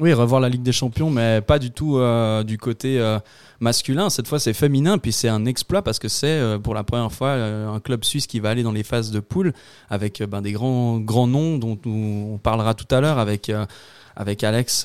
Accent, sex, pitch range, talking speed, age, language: French, male, 110-130 Hz, 245 wpm, 20-39, French